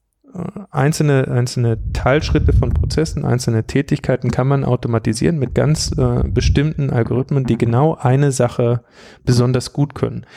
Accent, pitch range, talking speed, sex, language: German, 115-130 Hz, 125 wpm, male, German